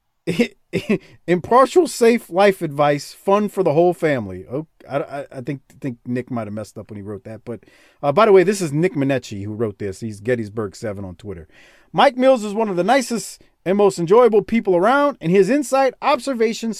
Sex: male